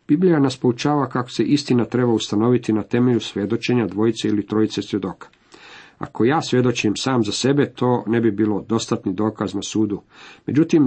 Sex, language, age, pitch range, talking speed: male, Croatian, 50-69, 105-135 Hz, 165 wpm